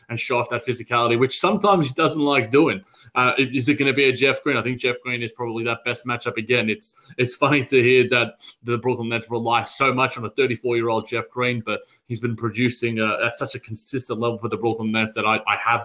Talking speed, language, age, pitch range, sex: 245 wpm, English, 20-39, 115-135 Hz, male